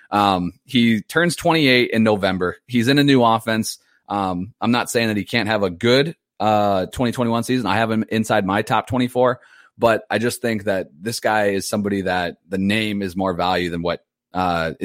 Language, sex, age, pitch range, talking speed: English, male, 30-49, 95-115 Hz, 200 wpm